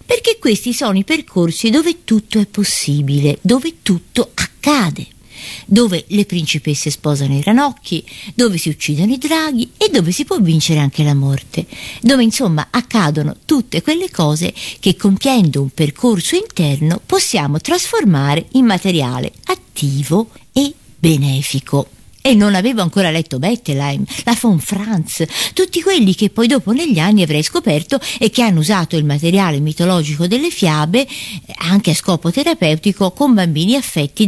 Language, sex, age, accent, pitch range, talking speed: Italian, female, 50-69, native, 150-225 Hz, 145 wpm